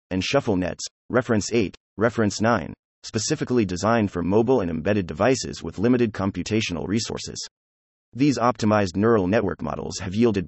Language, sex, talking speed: English, male, 145 wpm